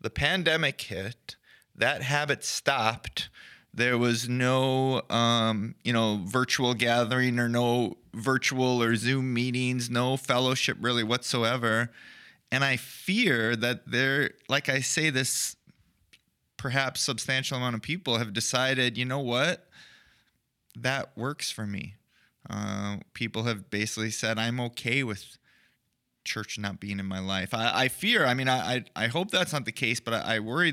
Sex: male